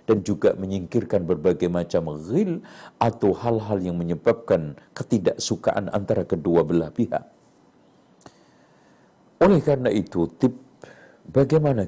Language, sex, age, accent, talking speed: Indonesian, male, 50-69, native, 100 wpm